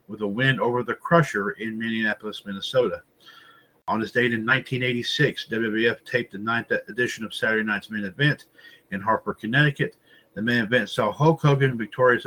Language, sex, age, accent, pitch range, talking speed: English, male, 50-69, American, 110-135 Hz, 165 wpm